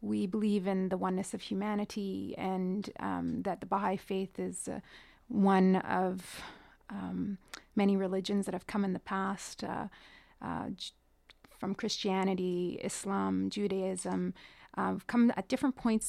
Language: English